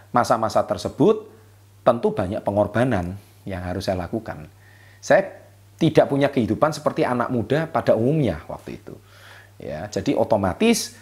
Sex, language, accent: male, Indonesian, native